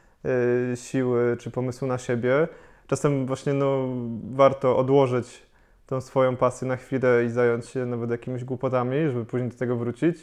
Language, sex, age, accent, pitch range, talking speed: Polish, male, 20-39, native, 120-135 Hz, 145 wpm